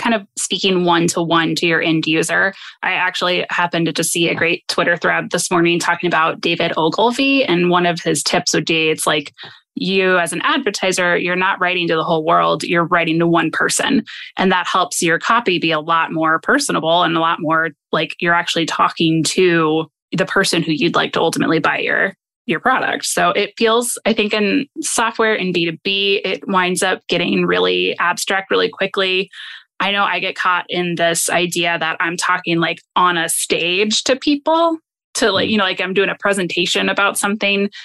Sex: female